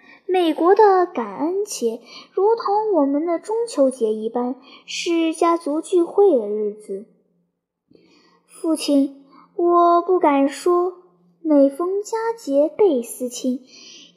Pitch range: 245-360 Hz